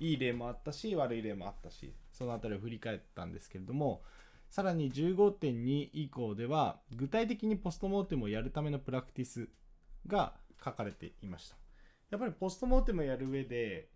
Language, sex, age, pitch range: Japanese, male, 20-39, 110-155 Hz